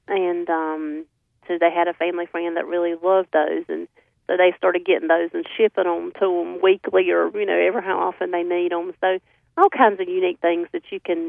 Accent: American